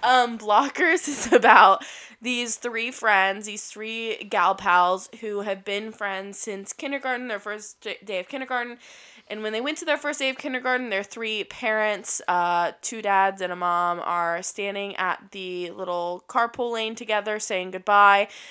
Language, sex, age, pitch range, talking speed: English, female, 20-39, 190-235 Hz, 165 wpm